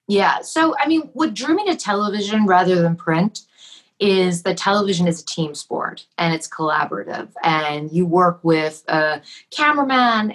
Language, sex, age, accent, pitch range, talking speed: English, female, 30-49, American, 155-200 Hz, 160 wpm